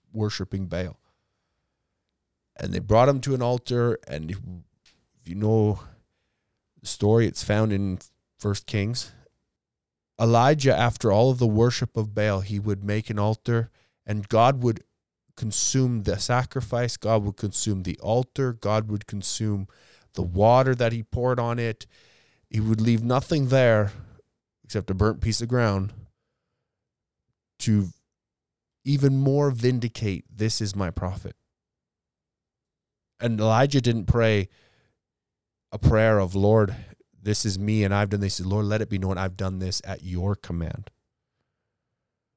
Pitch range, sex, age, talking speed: 100-120 Hz, male, 20-39, 140 wpm